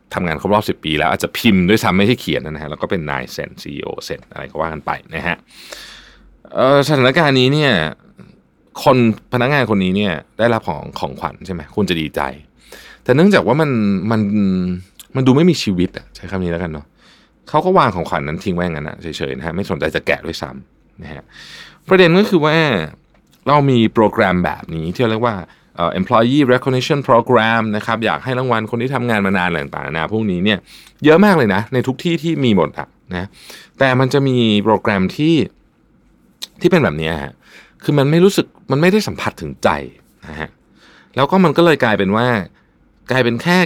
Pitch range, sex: 90-140 Hz, male